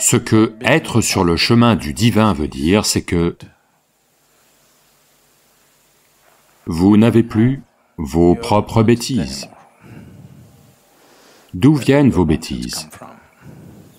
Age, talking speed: 40-59, 95 wpm